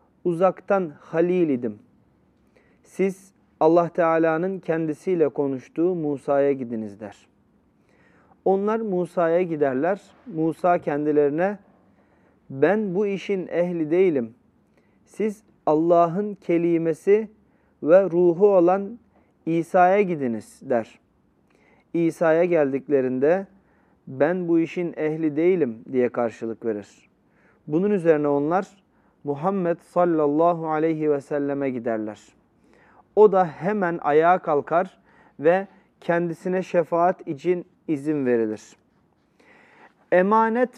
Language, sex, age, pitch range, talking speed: Turkish, male, 40-59, 150-190 Hz, 90 wpm